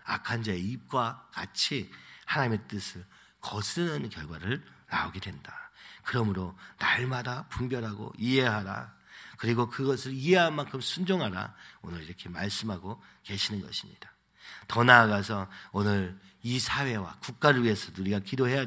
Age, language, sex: 40-59, Korean, male